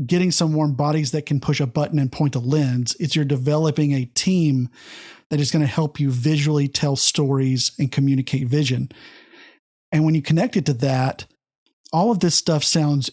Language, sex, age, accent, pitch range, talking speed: English, male, 40-59, American, 140-165 Hz, 190 wpm